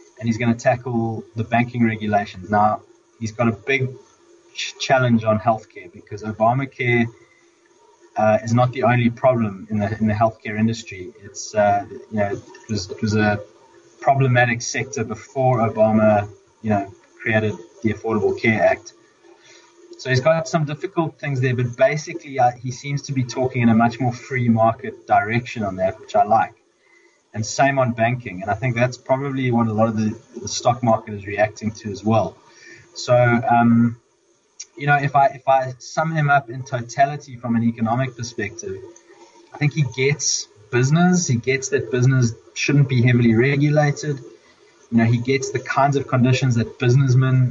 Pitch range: 115-140 Hz